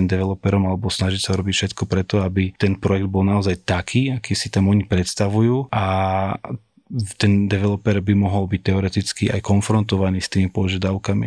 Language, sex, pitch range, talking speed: Slovak, male, 95-105 Hz, 160 wpm